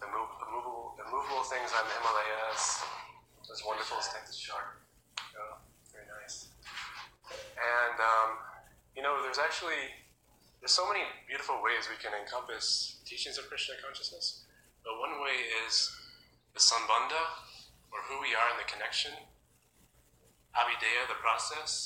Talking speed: 125 wpm